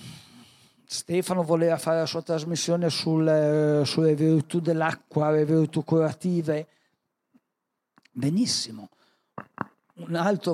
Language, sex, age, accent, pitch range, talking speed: Italian, male, 60-79, native, 140-175 Hz, 85 wpm